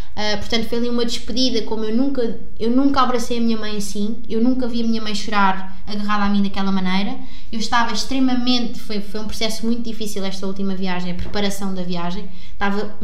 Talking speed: 205 wpm